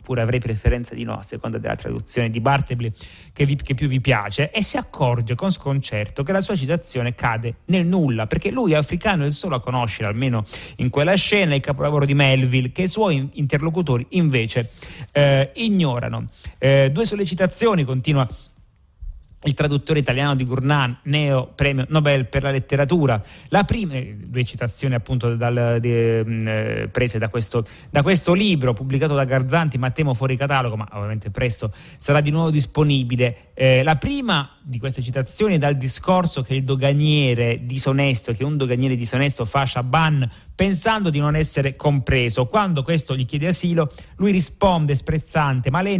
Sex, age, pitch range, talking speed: male, 30-49, 120-155 Hz, 170 wpm